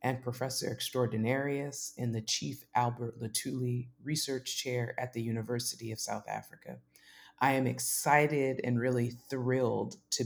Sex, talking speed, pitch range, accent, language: female, 135 wpm, 115-130 Hz, American, English